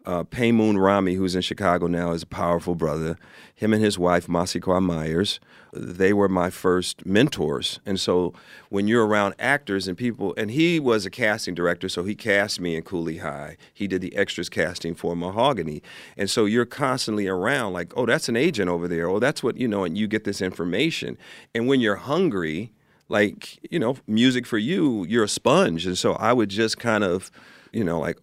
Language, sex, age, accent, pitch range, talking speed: English, male, 40-59, American, 90-120 Hz, 200 wpm